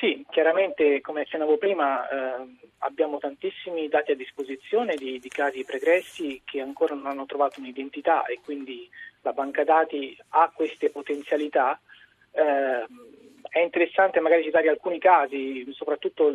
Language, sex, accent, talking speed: Italian, male, native, 135 wpm